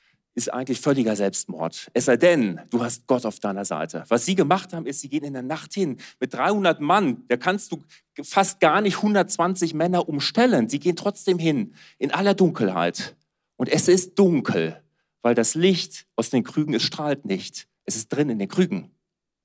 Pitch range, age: 120-175 Hz, 40-59